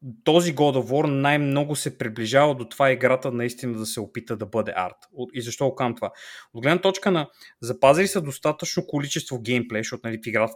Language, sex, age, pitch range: Bulgarian, male, 20-39, 115-150 Hz